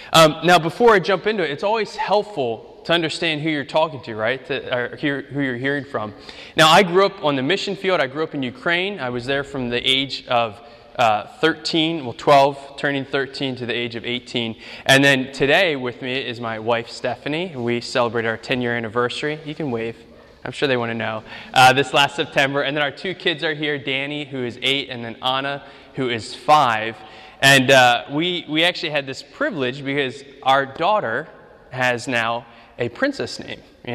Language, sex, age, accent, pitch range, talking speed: English, male, 20-39, American, 125-170 Hz, 205 wpm